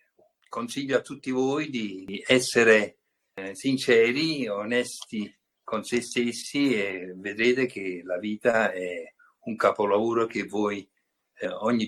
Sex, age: male, 60-79